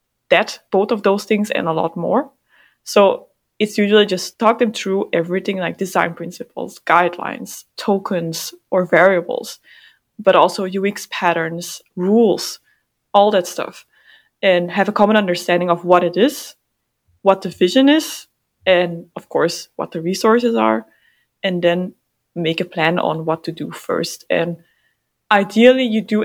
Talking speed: 150 wpm